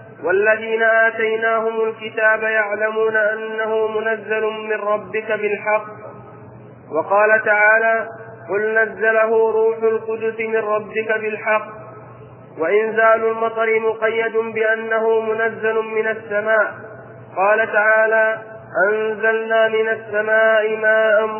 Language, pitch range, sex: Arabic, 215-225 Hz, male